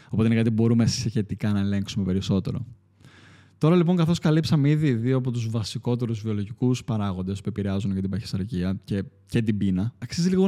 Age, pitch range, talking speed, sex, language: 20-39, 100-125 Hz, 170 wpm, male, Greek